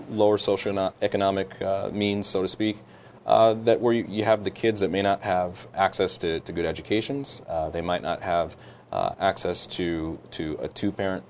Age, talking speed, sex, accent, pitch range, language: 30-49, 195 wpm, male, American, 95-105 Hz, English